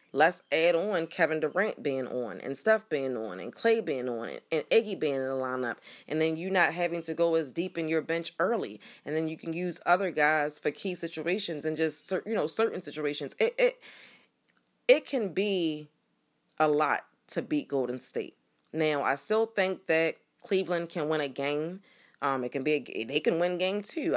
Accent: American